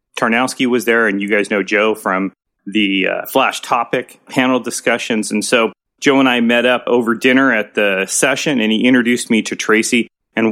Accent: American